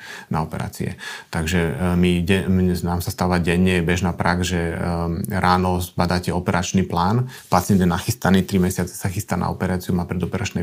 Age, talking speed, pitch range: 30-49, 170 wpm, 90-100 Hz